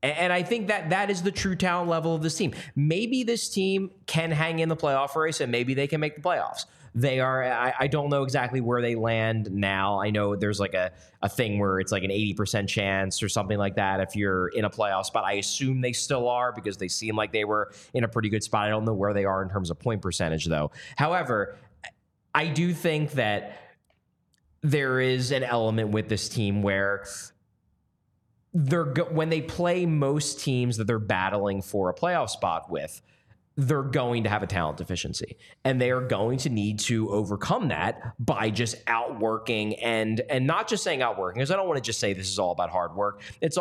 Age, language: 20-39, English